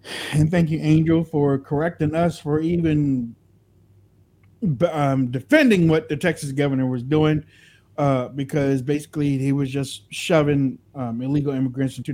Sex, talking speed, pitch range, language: male, 140 wpm, 130-170 Hz, English